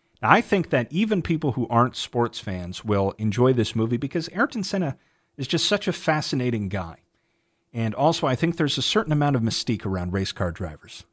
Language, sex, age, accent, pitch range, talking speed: English, male, 40-59, American, 100-145 Hz, 195 wpm